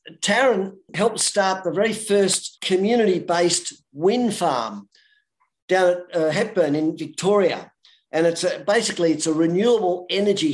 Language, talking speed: English, 120 wpm